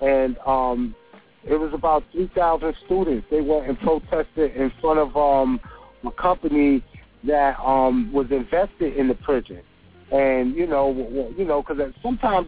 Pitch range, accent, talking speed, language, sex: 140-185 Hz, American, 150 wpm, English, male